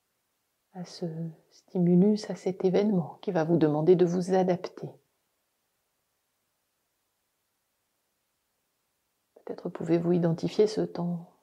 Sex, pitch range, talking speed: female, 170-200 Hz, 95 wpm